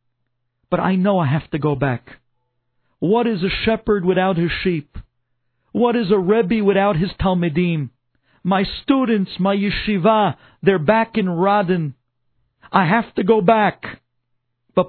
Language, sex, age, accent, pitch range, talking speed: English, male, 50-69, American, 125-185 Hz, 145 wpm